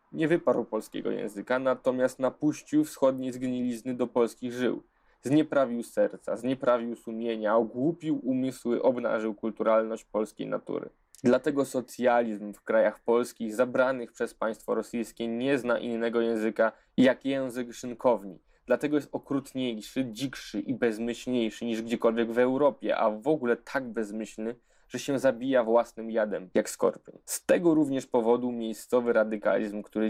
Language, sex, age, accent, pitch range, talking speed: Polish, male, 20-39, native, 110-130 Hz, 135 wpm